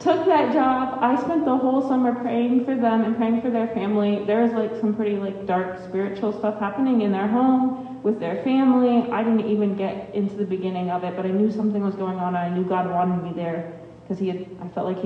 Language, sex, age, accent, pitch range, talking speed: English, female, 30-49, American, 195-230 Hz, 235 wpm